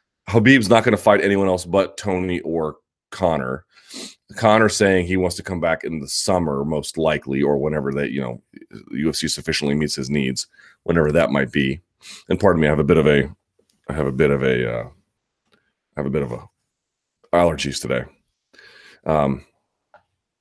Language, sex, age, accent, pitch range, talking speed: English, male, 30-49, American, 70-95 Hz, 180 wpm